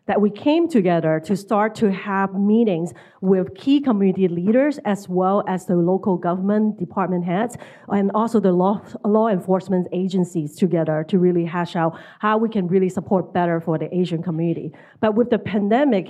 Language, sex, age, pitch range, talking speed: English, female, 40-59, 180-210 Hz, 175 wpm